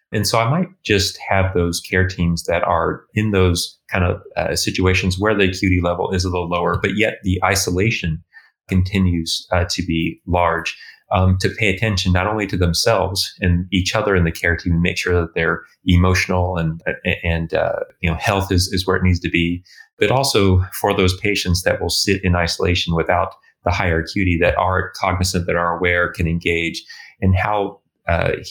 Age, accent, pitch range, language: 30-49, American, 85-100 Hz, English